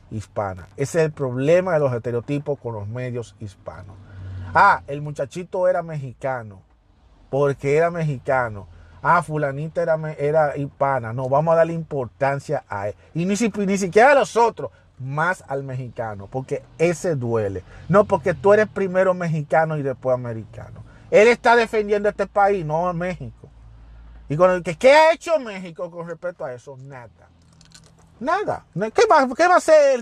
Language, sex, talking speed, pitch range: Spanish, male, 165 wpm, 120-185 Hz